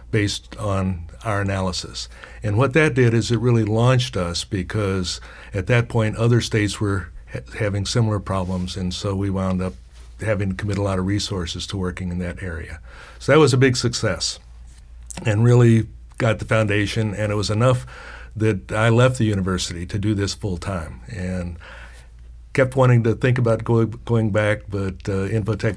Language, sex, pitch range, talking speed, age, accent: English, male, 95-115 Hz, 180 wpm, 60-79, American